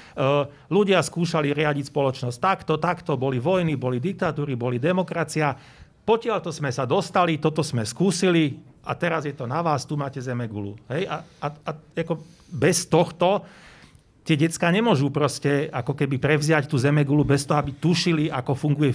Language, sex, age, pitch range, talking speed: Slovak, male, 40-59, 135-165 Hz, 160 wpm